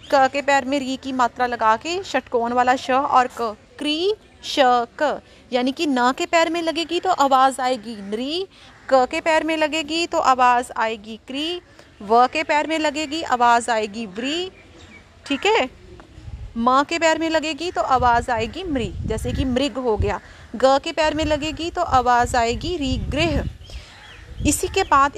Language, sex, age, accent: Hindi, female, 30-49, native